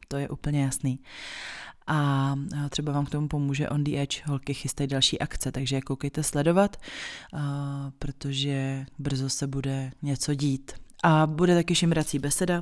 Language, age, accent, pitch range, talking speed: Czech, 20-39, native, 135-150 Hz, 145 wpm